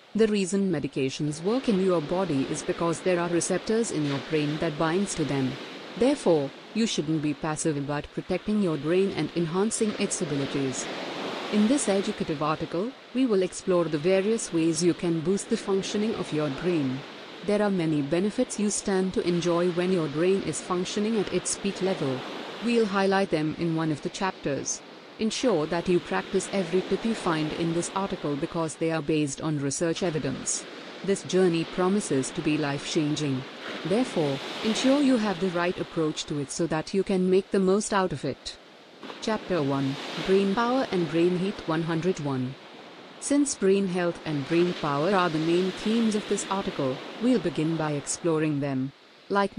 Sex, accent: female, native